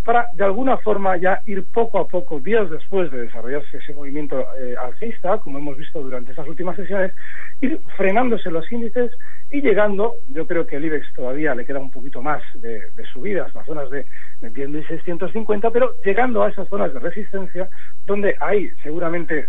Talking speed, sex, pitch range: 180 wpm, male, 155-205 Hz